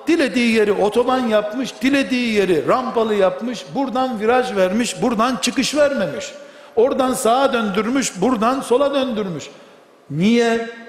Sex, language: male, Turkish